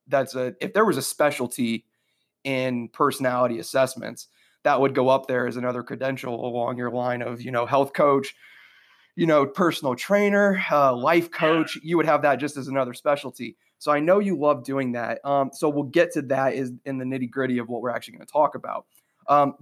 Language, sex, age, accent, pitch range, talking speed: English, male, 30-49, American, 125-145 Hz, 210 wpm